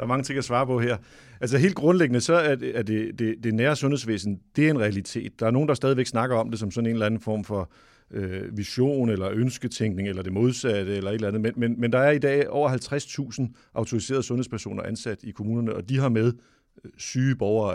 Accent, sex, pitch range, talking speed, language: Danish, male, 105-130 Hz, 225 wpm, English